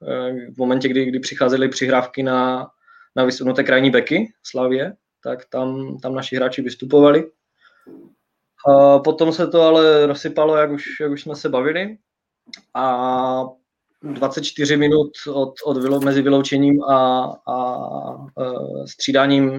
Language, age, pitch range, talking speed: Czech, 20-39, 130-145 Hz, 130 wpm